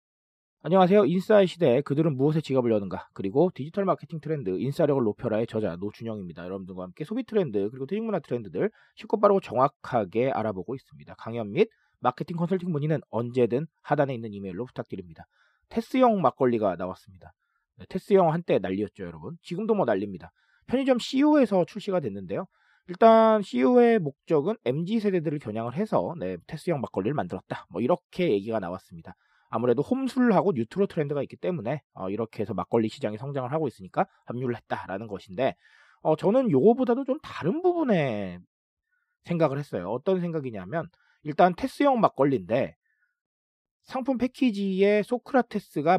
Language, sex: Korean, male